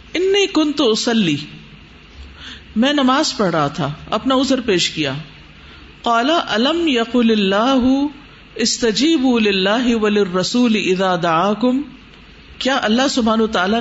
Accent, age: Indian, 50-69